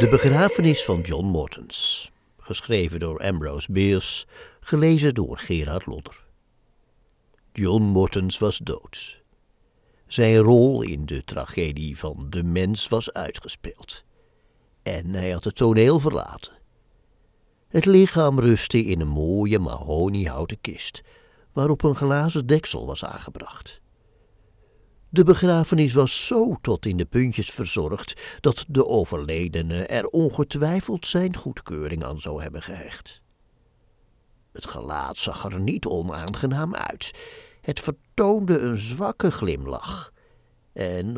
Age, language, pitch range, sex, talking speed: 60-79, Dutch, 90-140 Hz, male, 115 wpm